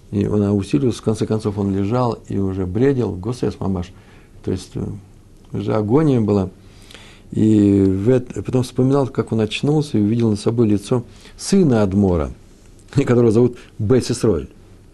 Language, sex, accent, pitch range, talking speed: Russian, male, native, 100-130 Hz, 140 wpm